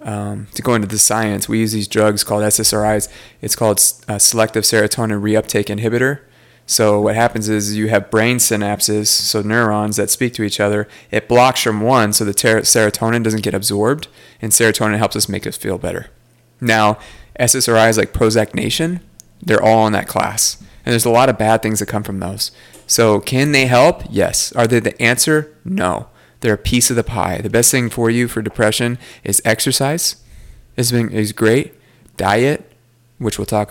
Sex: male